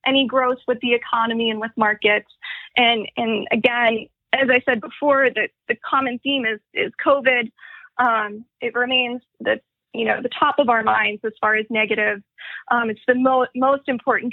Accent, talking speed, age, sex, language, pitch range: American, 180 wpm, 20-39, female, English, 225-265 Hz